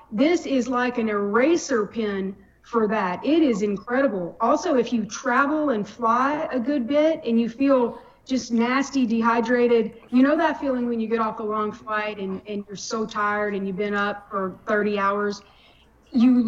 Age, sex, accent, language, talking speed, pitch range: 40-59, female, American, English, 180 wpm, 230-285 Hz